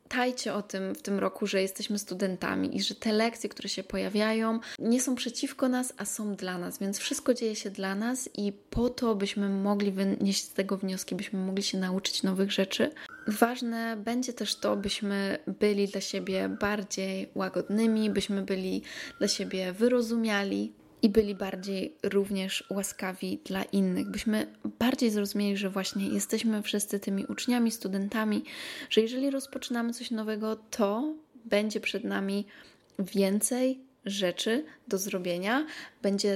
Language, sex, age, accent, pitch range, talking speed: Polish, female, 20-39, native, 195-225 Hz, 150 wpm